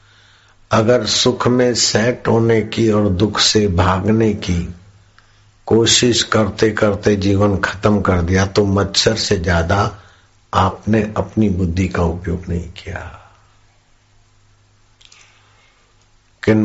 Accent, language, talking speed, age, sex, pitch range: native, Hindi, 105 wpm, 60-79, male, 95-110 Hz